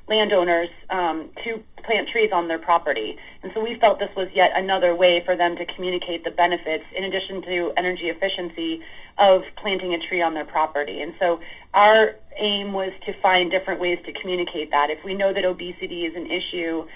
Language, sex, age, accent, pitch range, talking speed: English, female, 30-49, American, 165-190 Hz, 195 wpm